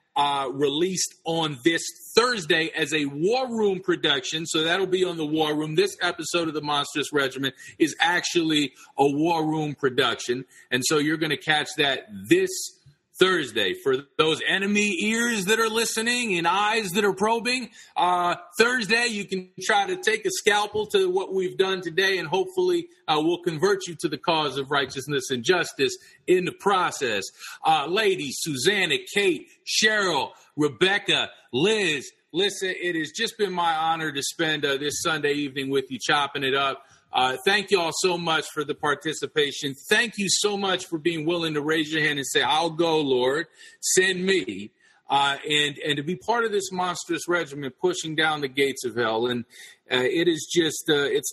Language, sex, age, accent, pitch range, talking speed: English, male, 40-59, American, 145-215 Hz, 180 wpm